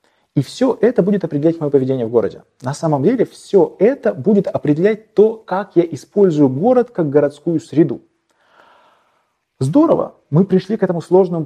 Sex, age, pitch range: male, 20-39, 130-185 Hz